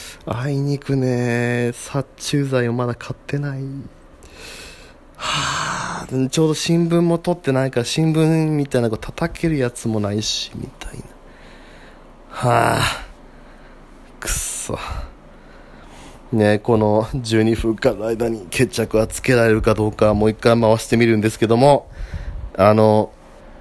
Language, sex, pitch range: Japanese, male, 110-160 Hz